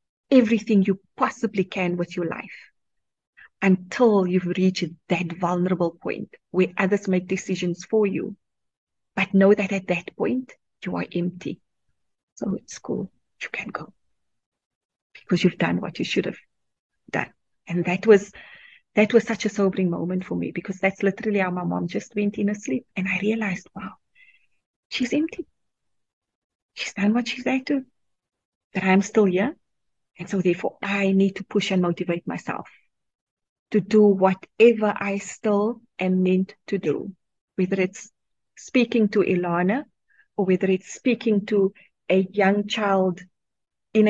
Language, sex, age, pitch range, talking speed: English, female, 30-49, 180-210 Hz, 150 wpm